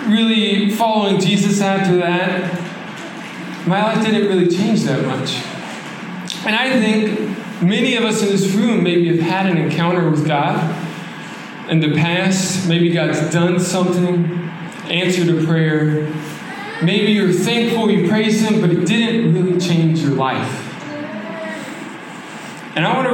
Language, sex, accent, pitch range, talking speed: English, male, American, 170-205 Hz, 145 wpm